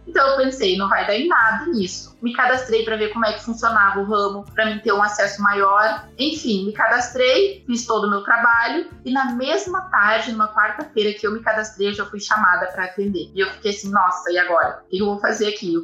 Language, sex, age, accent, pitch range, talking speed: Portuguese, female, 20-39, Brazilian, 195-250 Hz, 240 wpm